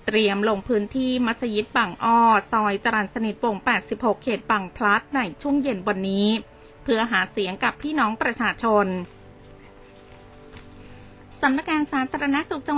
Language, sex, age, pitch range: Thai, female, 20-39, 210-255 Hz